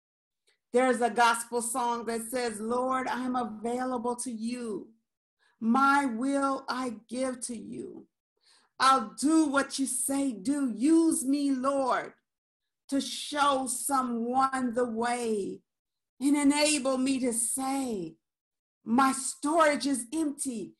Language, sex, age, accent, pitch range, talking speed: English, female, 50-69, American, 225-270 Hz, 115 wpm